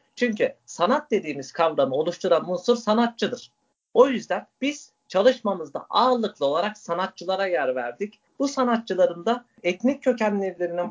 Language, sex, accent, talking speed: Turkish, male, native, 115 wpm